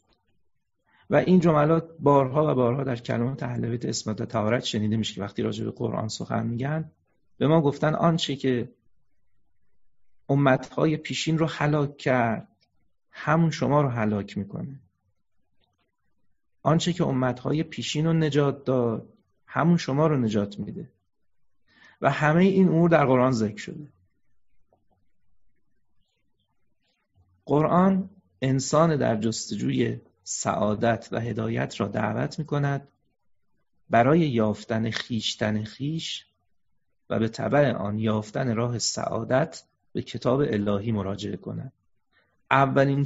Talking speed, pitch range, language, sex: 115 wpm, 110-150 Hz, Persian, male